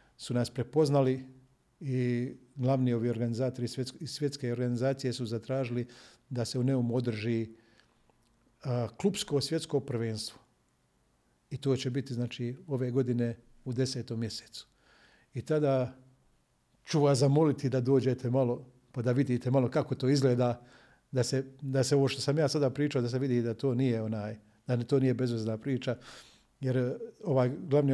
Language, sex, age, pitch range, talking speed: Croatian, male, 50-69, 120-140 Hz, 150 wpm